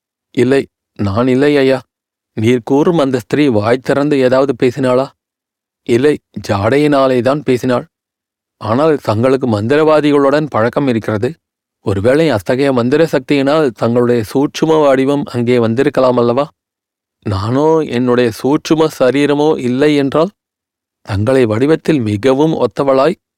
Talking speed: 100 wpm